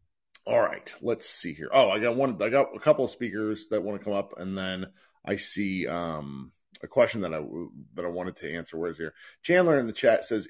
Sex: male